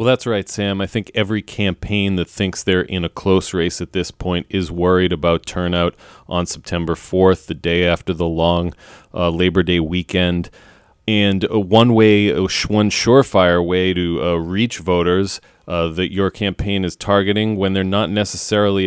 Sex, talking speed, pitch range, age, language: male, 180 wpm, 90-105 Hz, 30-49, English